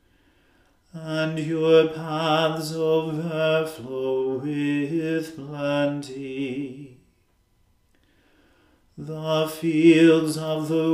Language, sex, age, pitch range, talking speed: English, male, 40-59, 140-160 Hz, 55 wpm